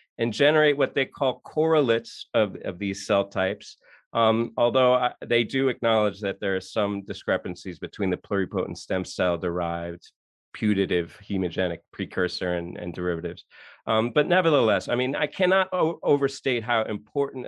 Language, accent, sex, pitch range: English, American, male, 100-125 Hz